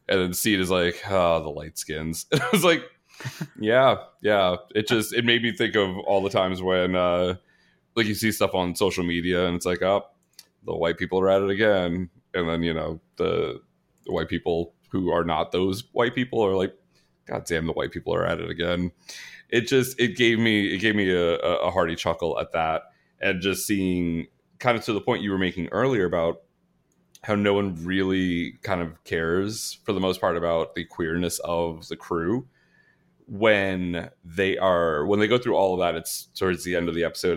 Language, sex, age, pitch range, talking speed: English, male, 30-49, 85-100 Hz, 205 wpm